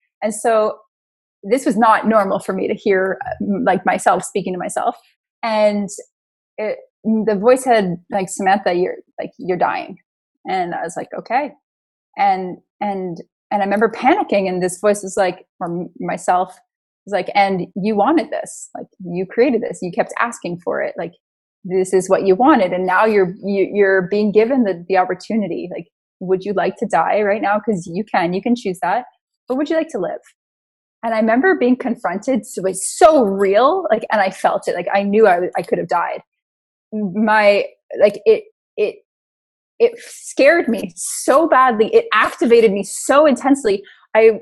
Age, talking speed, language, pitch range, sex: 20-39, 180 wpm, English, 195-250 Hz, female